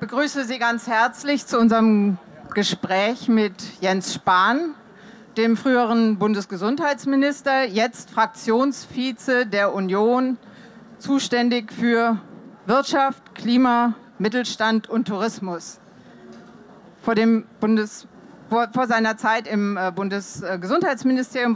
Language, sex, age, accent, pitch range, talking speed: German, female, 40-59, German, 210-250 Hz, 90 wpm